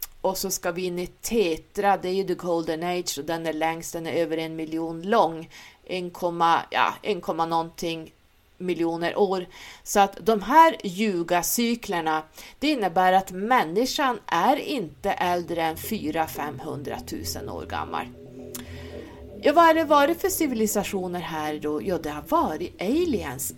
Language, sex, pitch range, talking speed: Swedish, female, 165-205 Hz, 160 wpm